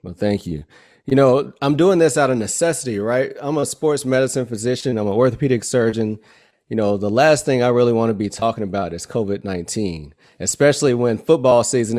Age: 30-49